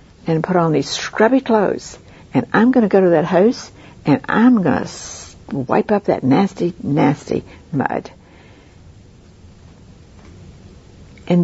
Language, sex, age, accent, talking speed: English, female, 60-79, American, 130 wpm